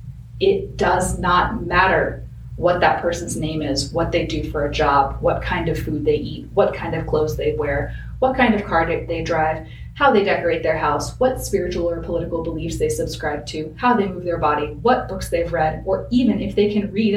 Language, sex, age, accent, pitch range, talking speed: English, female, 30-49, American, 150-195 Hz, 215 wpm